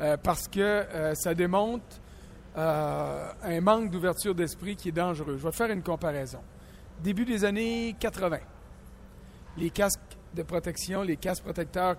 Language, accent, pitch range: French, Canadian, 170-225 Hz